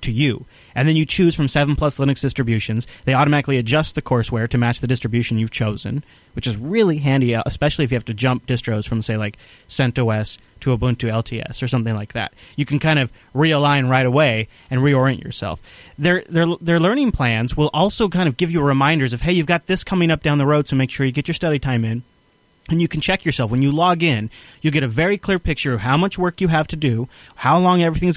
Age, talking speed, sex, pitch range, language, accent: 30-49, 235 wpm, male, 125-155 Hz, English, American